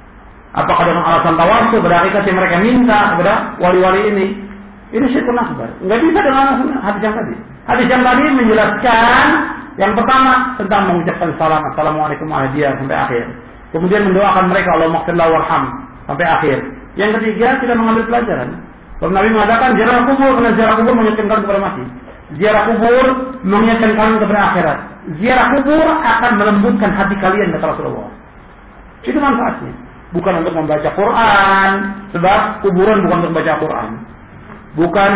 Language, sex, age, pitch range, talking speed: Malayalam, male, 50-69, 160-225 Hz, 145 wpm